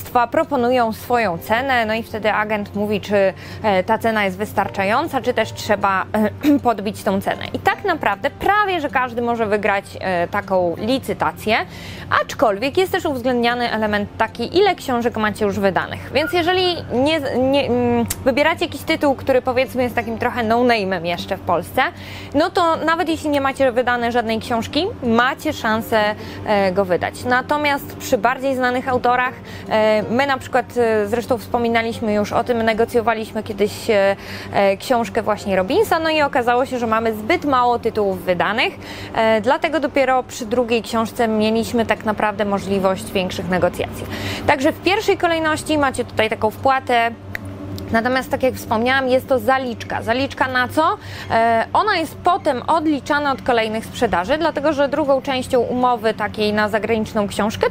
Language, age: Polish, 20-39